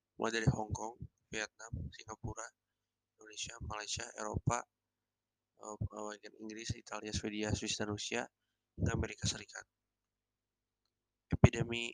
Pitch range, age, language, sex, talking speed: 110-115 Hz, 20-39, Indonesian, male, 105 wpm